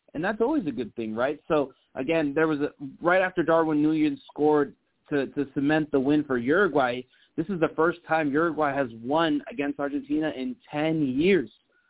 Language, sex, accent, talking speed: English, male, American, 185 wpm